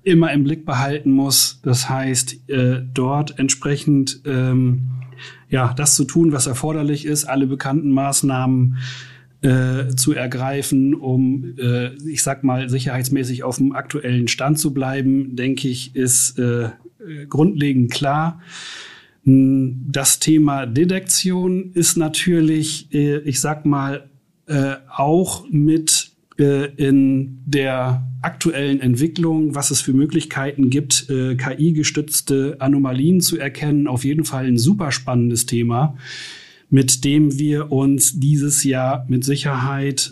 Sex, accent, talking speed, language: male, German, 125 wpm, German